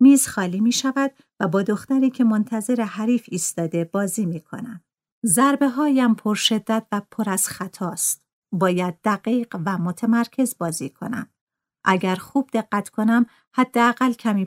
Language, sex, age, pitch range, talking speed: Persian, female, 50-69, 190-240 Hz, 140 wpm